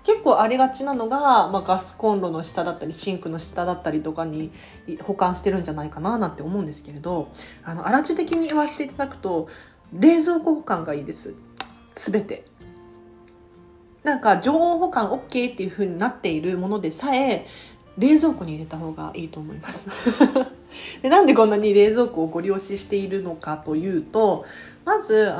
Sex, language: female, Japanese